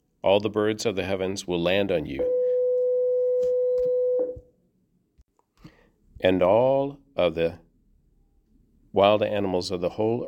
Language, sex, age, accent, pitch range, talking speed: English, male, 50-69, American, 85-105 Hz, 110 wpm